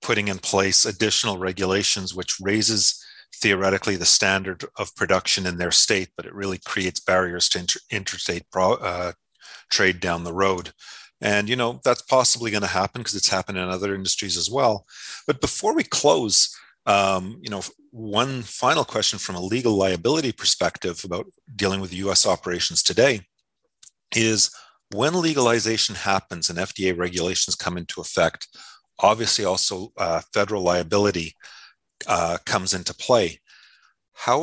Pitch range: 90-110 Hz